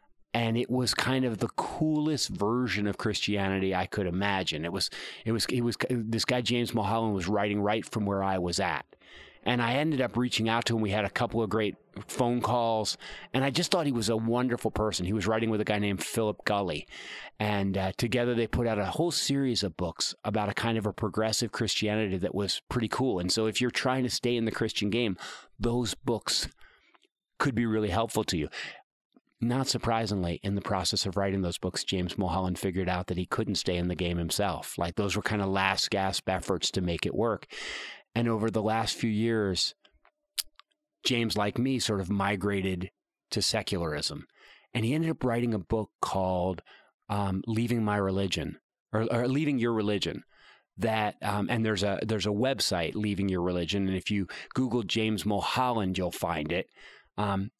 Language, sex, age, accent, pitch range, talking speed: English, male, 30-49, American, 95-120 Hz, 200 wpm